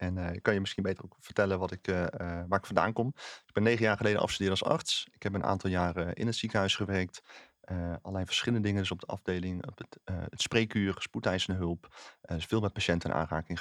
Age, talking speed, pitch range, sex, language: 30-49, 245 wpm, 85-100 Hz, male, Dutch